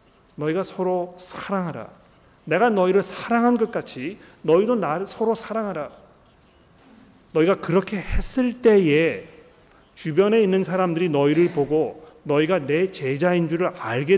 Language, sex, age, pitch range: Korean, male, 40-59, 145-195 Hz